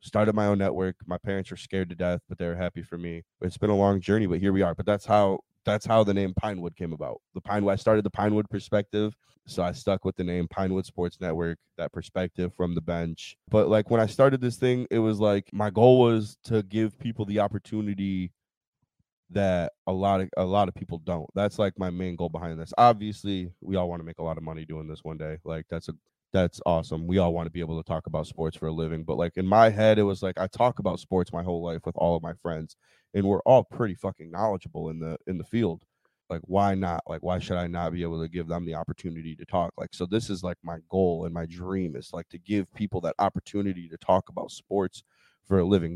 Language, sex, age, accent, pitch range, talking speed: English, male, 20-39, American, 85-105 Hz, 250 wpm